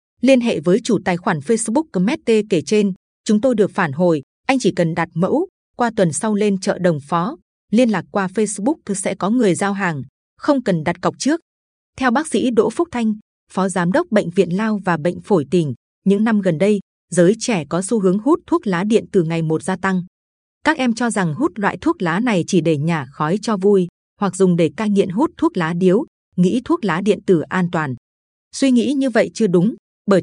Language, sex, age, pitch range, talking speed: Vietnamese, female, 20-39, 175-230 Hz, 225 wpm